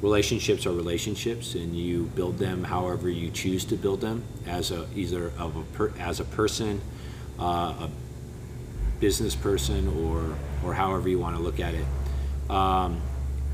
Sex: male